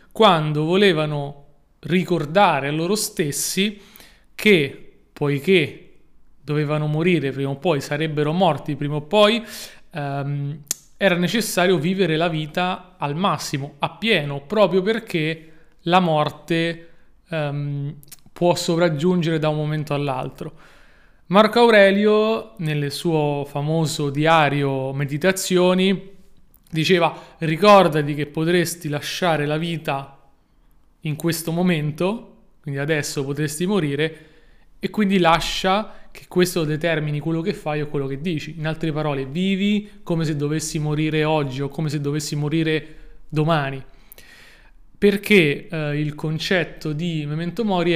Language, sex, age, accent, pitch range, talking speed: Italian, male, 30-49, native, 150-180 Hz, 120 wpm